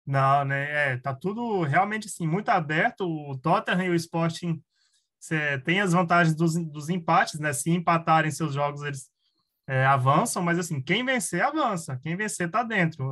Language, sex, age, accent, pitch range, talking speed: Portuguese, male, 20-39, Brazilian, 150-190 Hz, 175 wpm